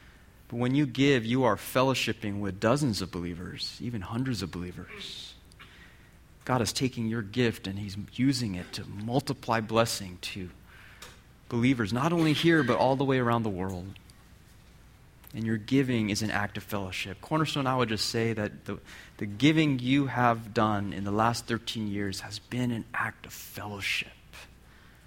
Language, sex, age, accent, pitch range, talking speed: English, male, 30-49, American, 105-135 Hz, 170 wpm